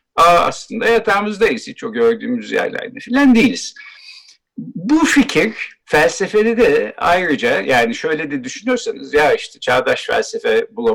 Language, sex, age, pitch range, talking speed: Turkish, male, 60-79, 220-295 Hz, 115 wpm